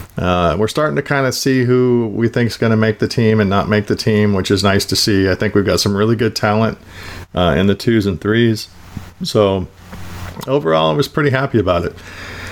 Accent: American